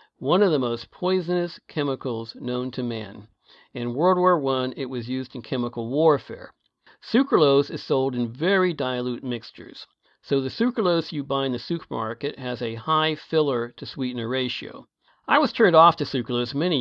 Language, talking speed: English, 170 wpm